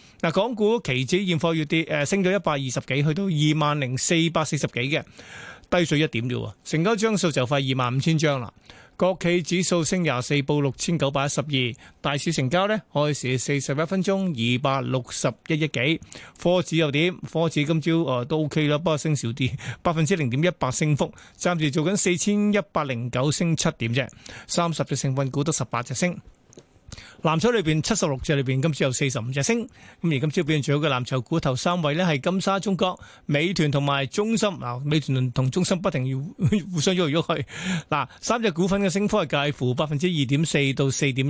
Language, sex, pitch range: Chinese, male, 135-175 Hz